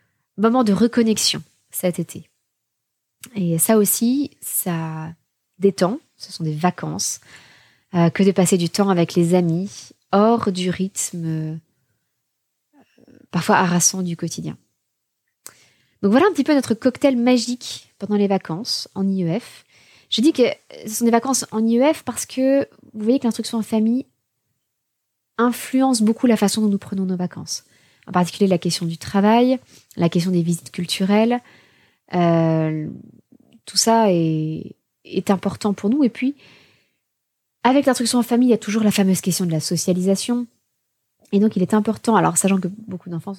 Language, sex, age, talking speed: French, female, 20-39, 160 wpm